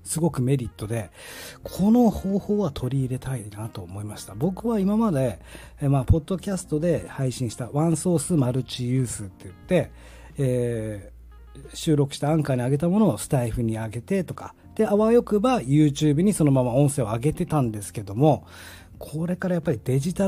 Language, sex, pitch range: Japanese, male, 110-170 Hz